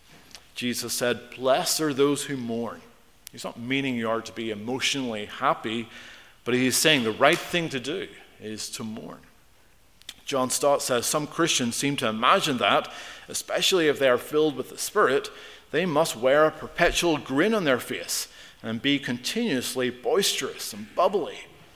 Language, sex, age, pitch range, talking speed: English, male, 40-59, 110-145 Hz, 165 wpm